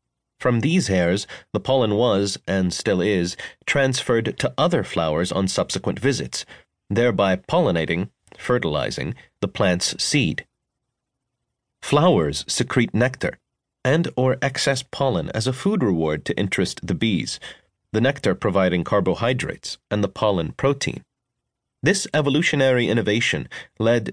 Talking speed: 120 wpm